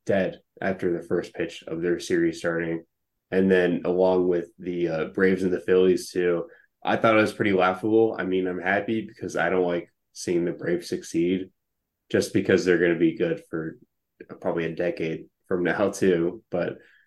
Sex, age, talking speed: male, 20-39, 185 wpm